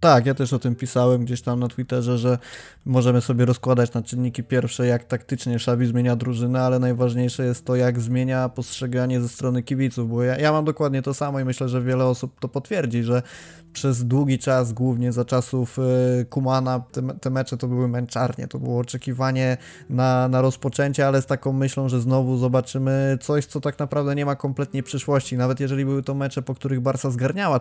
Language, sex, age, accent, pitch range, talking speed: Polish, male, 20-39, native, 125-140 Hz, 195 wpm